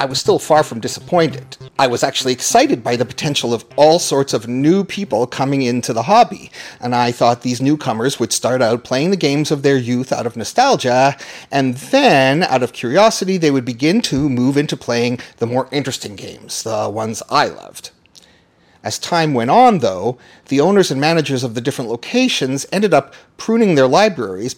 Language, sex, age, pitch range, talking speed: English, male, 40-59, 120-165 Hz, 190 wpm